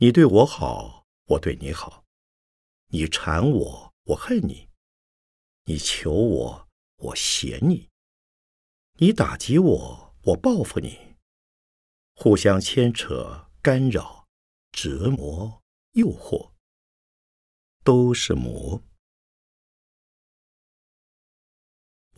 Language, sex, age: Chinese, male, 50-69